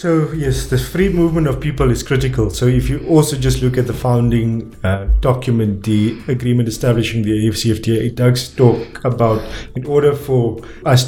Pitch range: 115-130 Hz